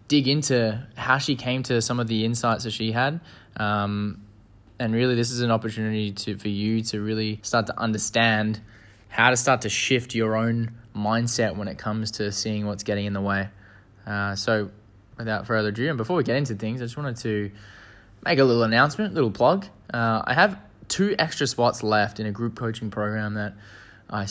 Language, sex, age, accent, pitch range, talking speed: English, male, 20-39, Australian, 105-120 Hz, 200 wpm